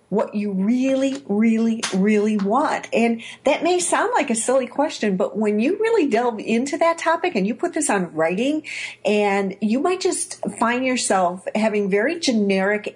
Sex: female